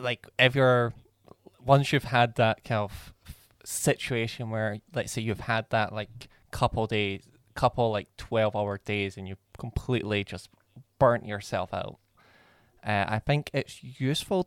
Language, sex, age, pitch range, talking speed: English, male, 20-39, 105-125 Hz, 150 wpm